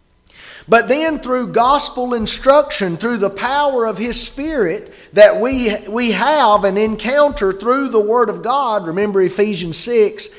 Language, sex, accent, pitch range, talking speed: English, male, American, 180-255 Hz, 145 wpm